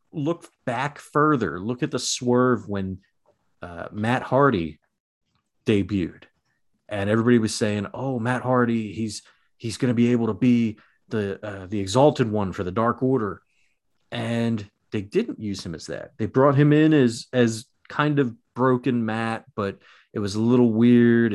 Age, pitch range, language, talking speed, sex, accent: 30-49, 100-125 Hz, English, 165 wpm, male, American